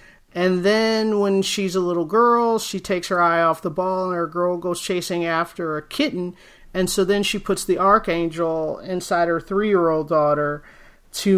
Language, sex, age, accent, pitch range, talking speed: English, male, 40-59, American, 165-195 Hz, 180 wpm